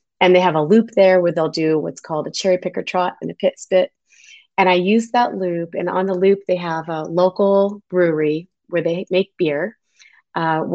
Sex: female